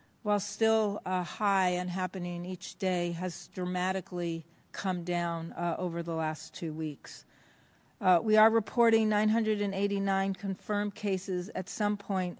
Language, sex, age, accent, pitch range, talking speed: English, female, 50-69, American, 180-205 Hz, 135 wpm